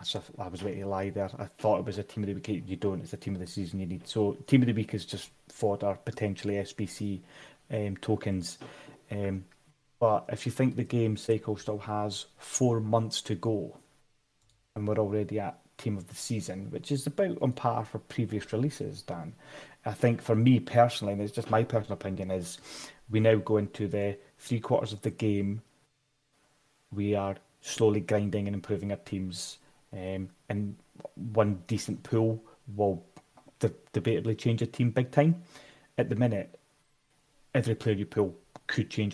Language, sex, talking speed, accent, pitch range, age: English, male, 185 wpm, British, 100-140 Hz, 30-49